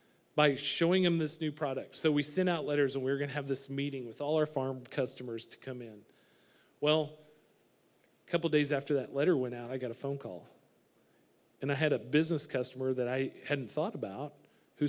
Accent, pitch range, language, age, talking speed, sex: American, 135-175 Hz, English, 40-59, 215 wpm, male